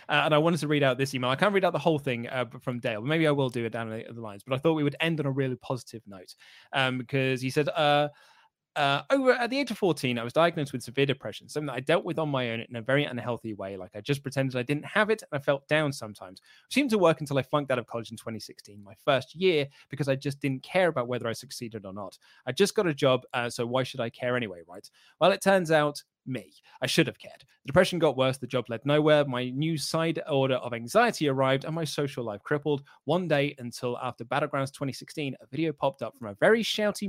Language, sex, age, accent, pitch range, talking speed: English, male, 20-39, British, 125-155 Hz, 270 wpm